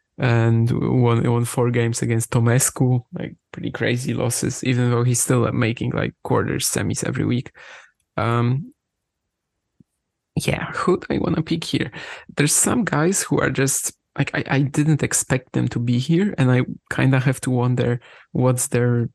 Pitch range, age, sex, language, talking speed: 125-160 Hz, 20-39, male, English, 170 wpm